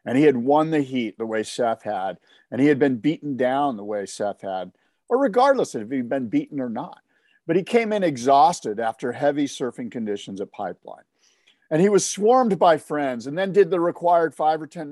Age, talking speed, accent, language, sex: 50-69, 215 wpm, American, English, male